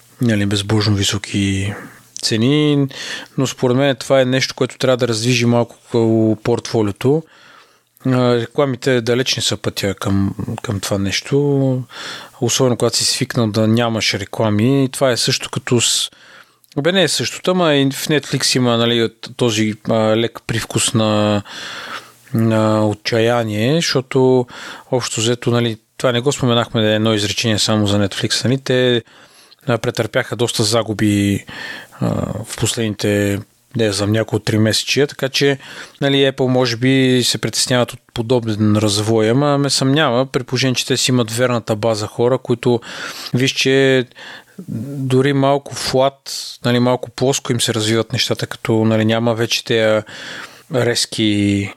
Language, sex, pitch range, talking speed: Bulgarian, male, 110-130 Hz, 135 wpm